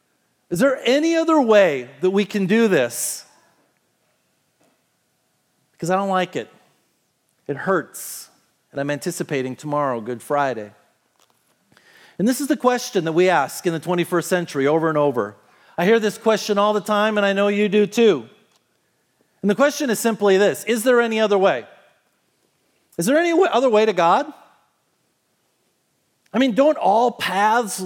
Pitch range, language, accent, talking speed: 195-265 Hz, English, American, 160 wpm